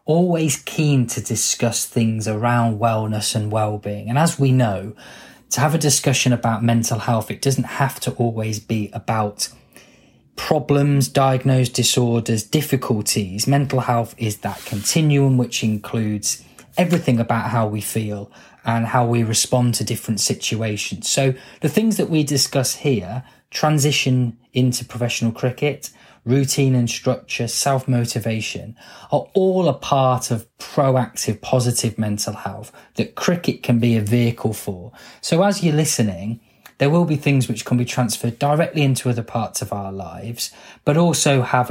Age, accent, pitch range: 20-39, British, 110-135 Hz